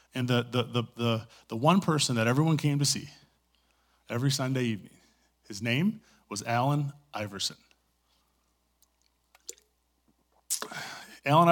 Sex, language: male, English